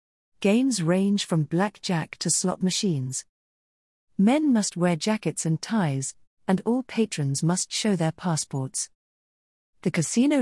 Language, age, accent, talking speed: English, 40-59, British, 125 wpm